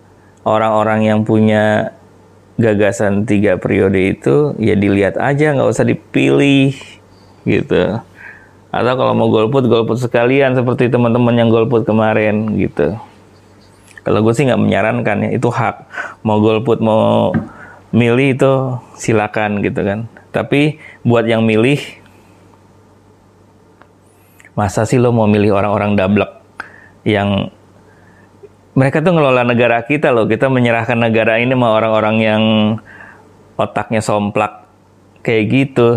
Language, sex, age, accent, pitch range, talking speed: Indonesian, male, 20-39, native, 100-115 Hz, 115 wpm